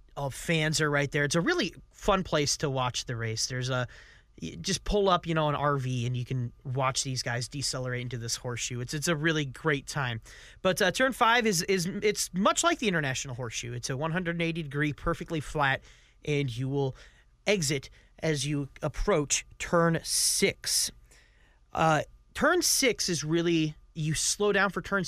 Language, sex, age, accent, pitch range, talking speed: English, male, 30-49, American, 135-180 Hz, 180 wpm